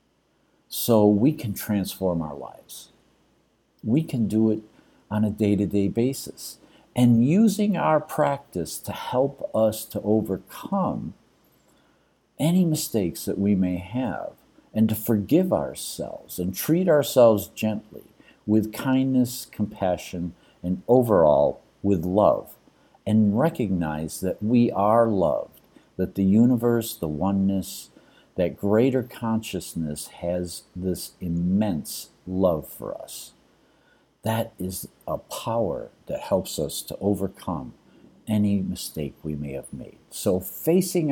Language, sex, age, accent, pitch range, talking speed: English, male, 50-69, American, 90-120 Hz, 120 wpm